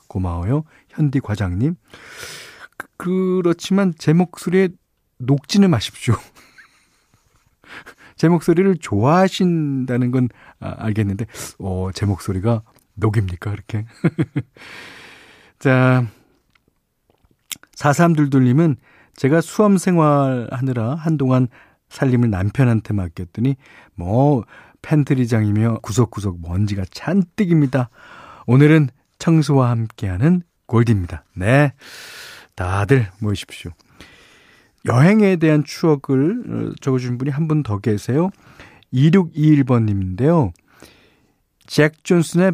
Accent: native